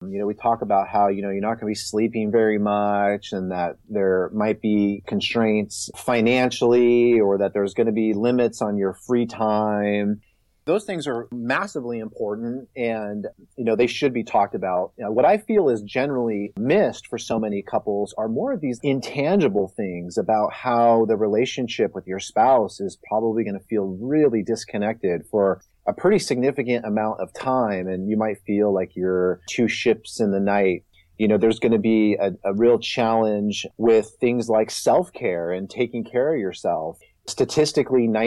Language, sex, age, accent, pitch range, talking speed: English, male, 30-49, American, 100-120 Hz, 180 wpm